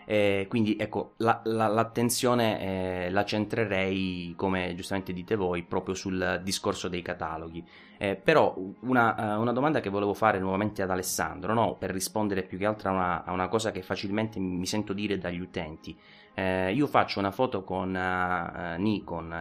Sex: male